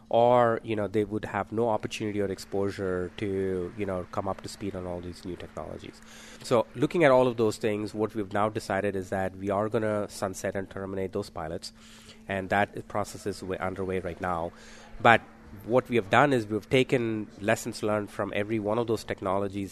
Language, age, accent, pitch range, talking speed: English, 30-49, Indian, 100-115 Hz, 205 wpm